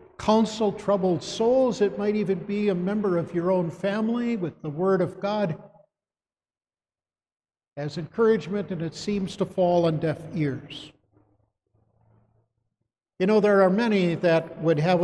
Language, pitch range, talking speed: English, 155-200 Hz, 145 wpm